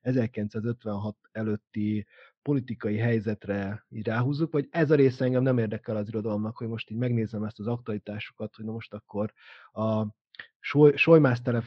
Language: Hungarian